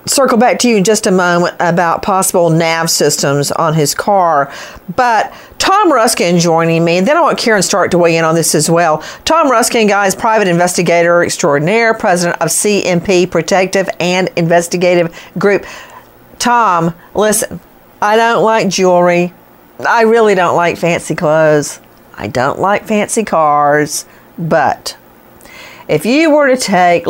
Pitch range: 170-250 Hz